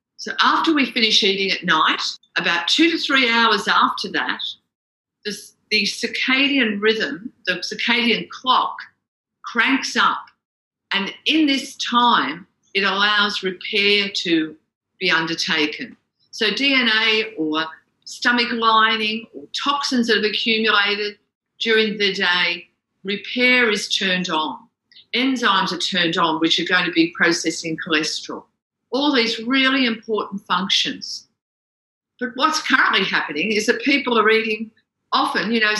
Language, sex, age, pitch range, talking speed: English, female, 50-69, 190-245 Hz, 130 wpm